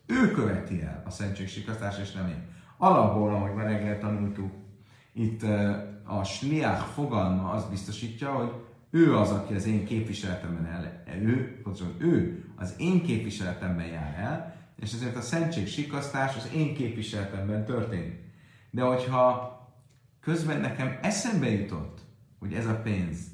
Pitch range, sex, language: 100-125 Hz, male, Hungarian